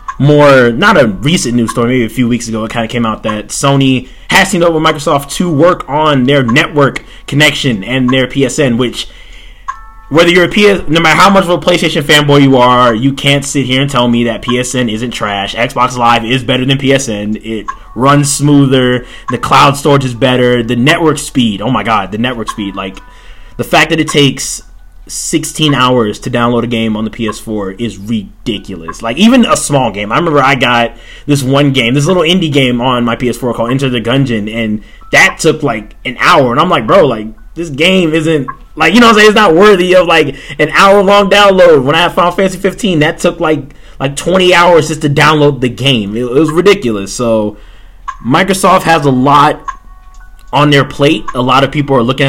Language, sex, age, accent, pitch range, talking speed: English, male, 20-39, American, 120-155 Hz, 210 wpm